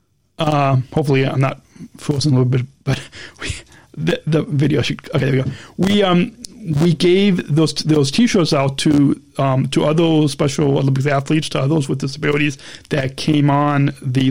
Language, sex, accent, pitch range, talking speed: English, male, American, 135-160 Hz, 170 wpm